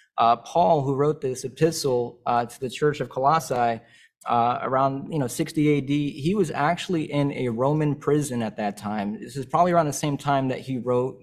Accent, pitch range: American, 125-155 Hz